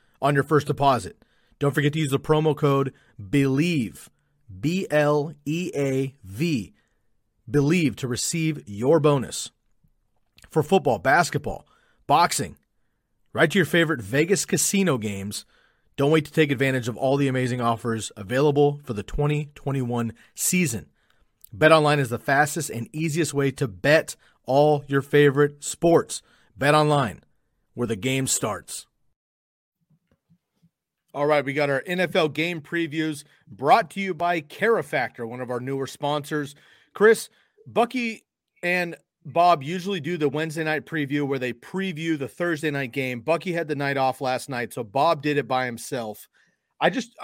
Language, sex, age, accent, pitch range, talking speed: English, male, 40-59, American, 130-160 Hz, 150 wpm